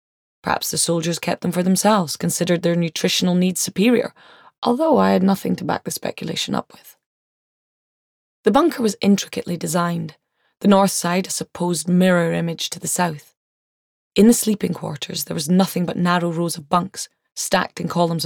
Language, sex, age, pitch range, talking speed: English, female, 20-39, 165-185 Hz, 170 wpm